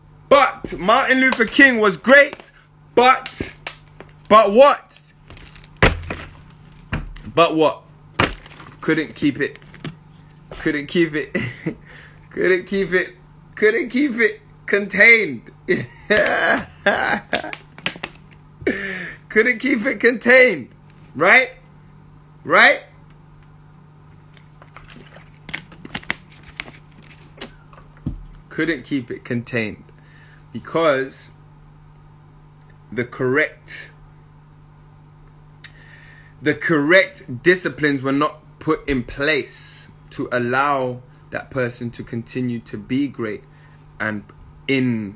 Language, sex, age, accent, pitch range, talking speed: English, male, 30-49, American, 135-160 Hz, 75 wpm